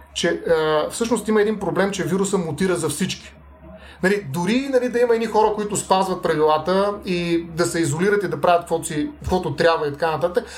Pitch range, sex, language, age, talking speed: 165-205 Hz, male, Bulgarian, 30-49, 185 wpm